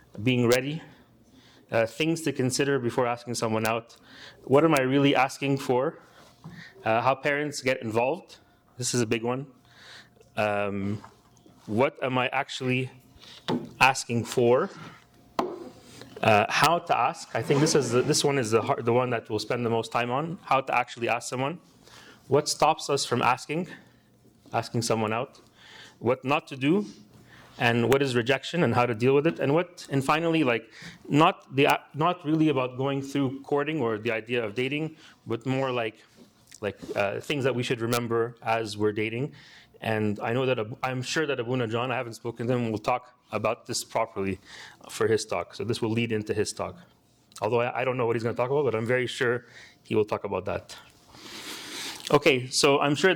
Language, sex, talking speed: English, male, 190 wpm